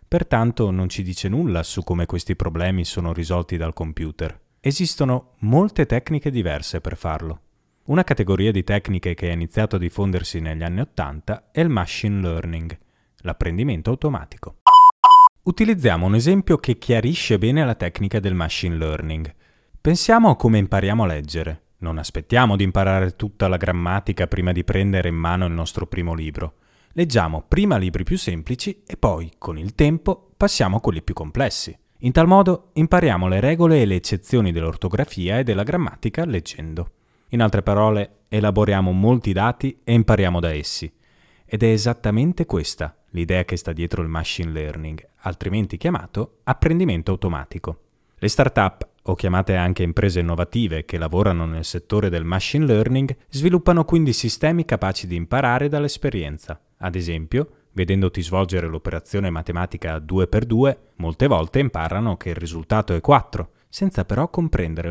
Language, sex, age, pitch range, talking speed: Italian, male, 30-49, 85-125 Hz, 150 wpm